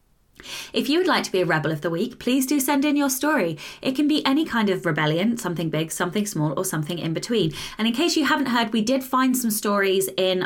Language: English